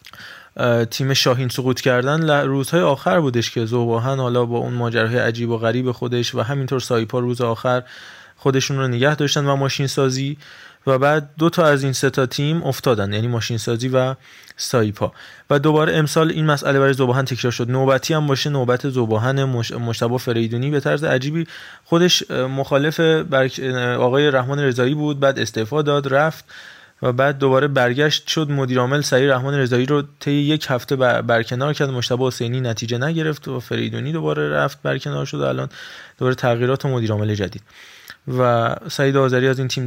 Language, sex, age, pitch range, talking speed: Persian, male, 20-39, 120-145 Hz, 170 wpm